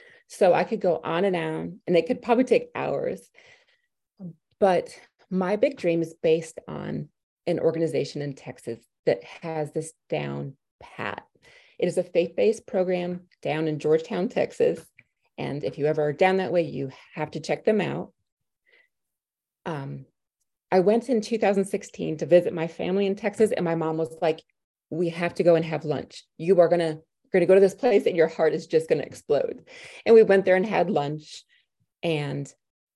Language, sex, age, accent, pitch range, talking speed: English, female, 30-49, American, 165-210 Hz, 180 wpm